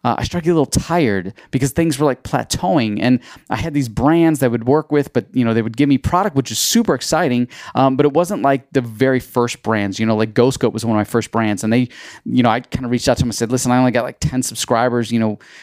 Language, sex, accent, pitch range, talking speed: English, male, American, 115-140 Hz, 285 wpm